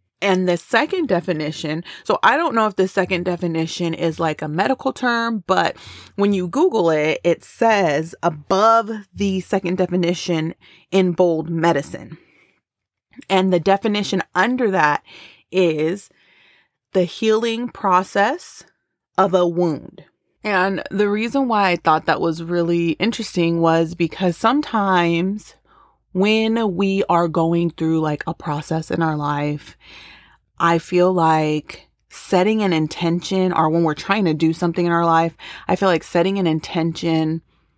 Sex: female